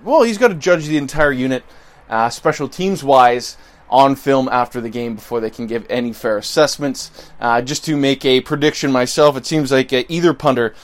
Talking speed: 195 wpm